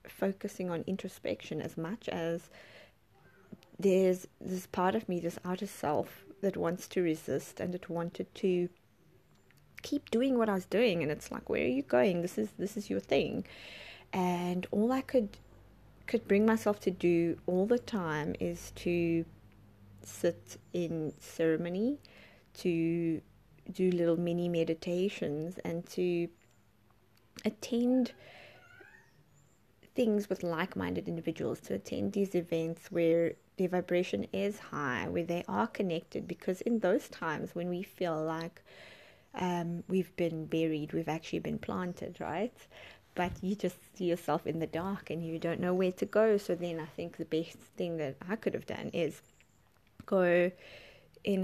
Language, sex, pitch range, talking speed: English, female, 165-195 Hz, 150 wpm